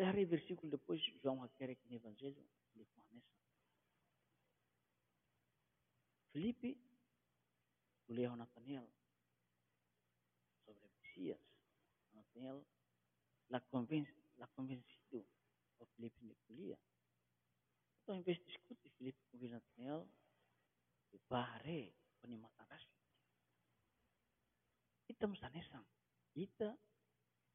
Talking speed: 105 wpm